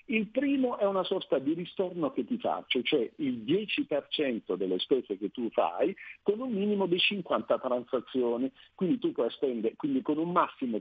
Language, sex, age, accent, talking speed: Italian, male, 50-69, native, 180 wpm